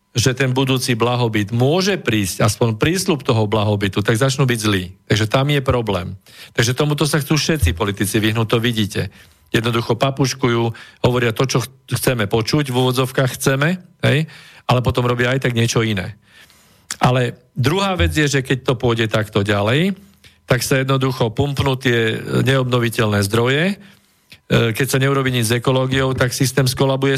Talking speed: 155 wpm